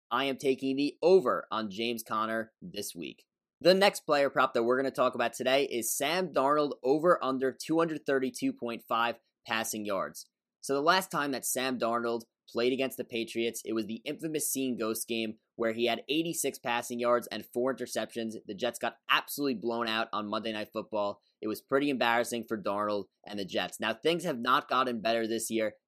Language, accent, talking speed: English, American, 190 wpm